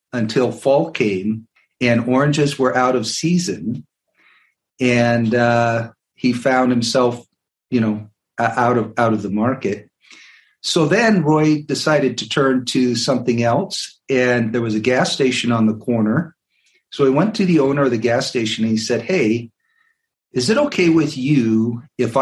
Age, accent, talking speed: 50-69, American, 160 wpm